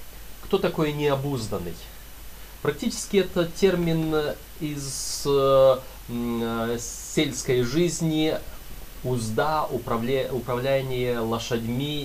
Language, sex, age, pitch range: Russian, male, 30-49, 120-170 Hz